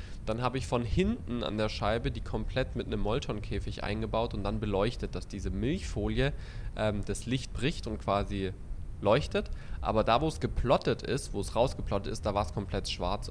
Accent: German